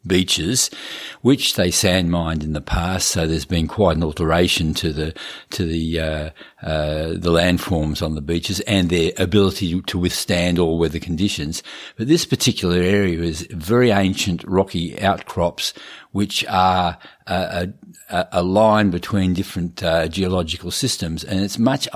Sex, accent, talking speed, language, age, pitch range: male, Australian, 155 wpm, English, 50-69, 85-100 Hz